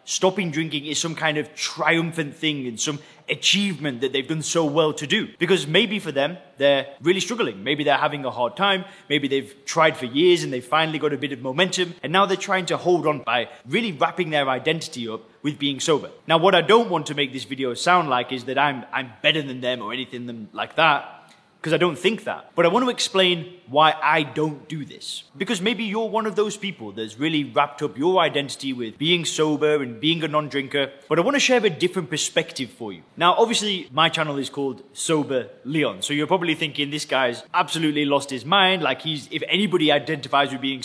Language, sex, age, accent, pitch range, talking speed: English, male, 20-39, British, 135-175 Hz, 225 wpm